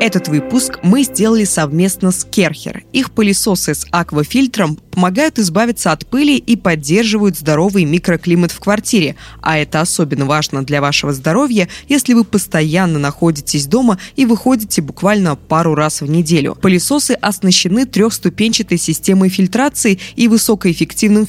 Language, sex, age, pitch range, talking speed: Russian, female, 20-39, 165-225 Hz, 130 wpm